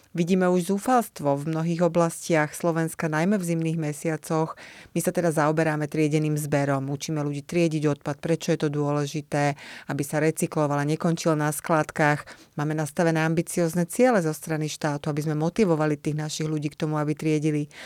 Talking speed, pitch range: 160 wpm, 150-170 Hz